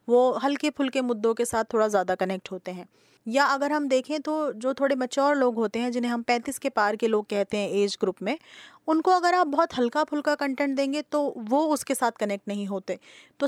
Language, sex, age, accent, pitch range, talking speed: Hindi, female, 20-39, native, 230-285 Hz, 225 wpm